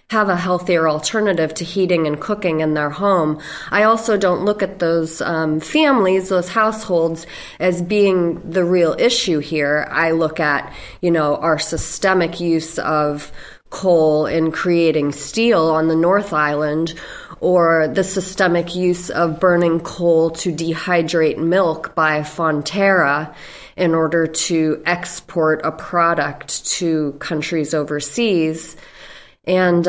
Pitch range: 160-185 Hz